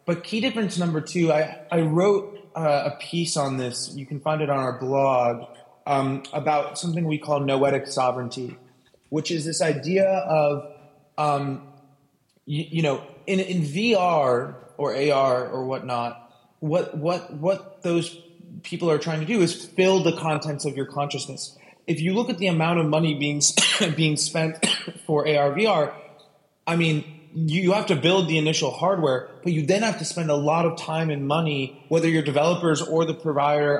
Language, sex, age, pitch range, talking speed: English, male, 20-39, 145-175 Hz, 180 wpm